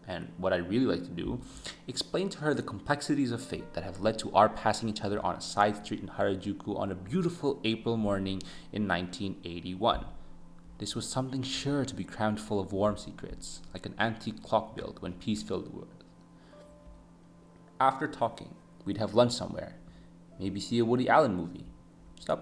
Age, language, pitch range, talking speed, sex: 20-39, English, 90-115 Hz, 185 wpm, male